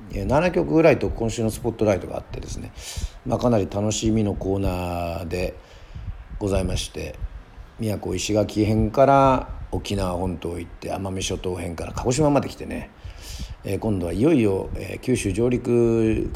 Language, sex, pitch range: Japanese, male, 90-115 Hz